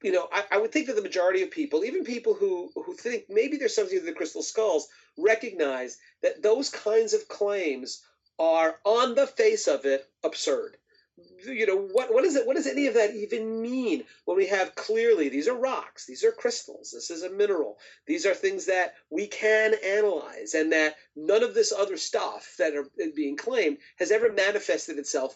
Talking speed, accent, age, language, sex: 200 wpm, American, 40-59, English, male